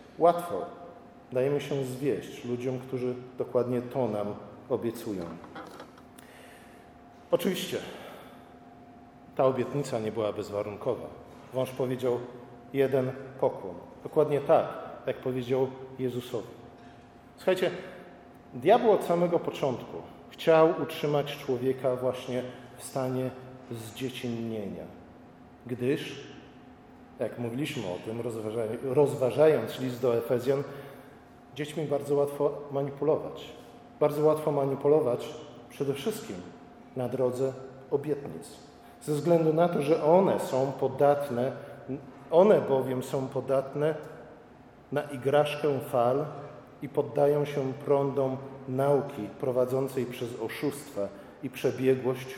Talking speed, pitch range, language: 95 wpm, 125-145 Hz, Polish